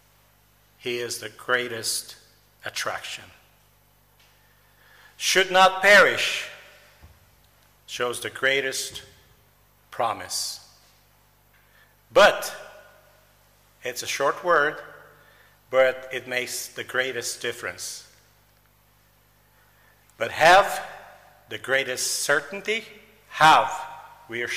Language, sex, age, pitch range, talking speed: English, male, 50-69, 115-140 Hz, 75 wpm